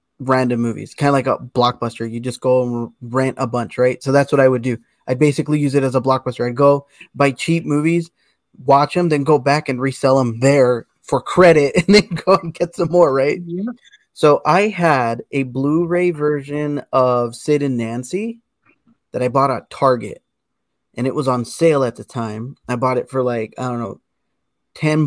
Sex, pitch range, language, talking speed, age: male, 130-165 Hz, English, 200 wpm, 20-39